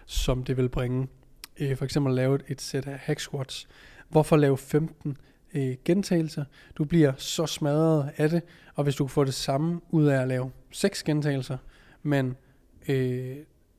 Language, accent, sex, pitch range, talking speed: Danish, native, male, 135-165 Hz, 160 wpm